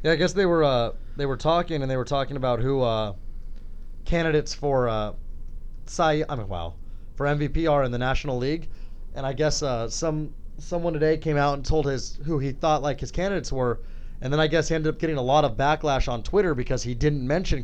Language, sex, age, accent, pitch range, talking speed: English, male, 20-39, American, 115-155 Hz, 230 wpm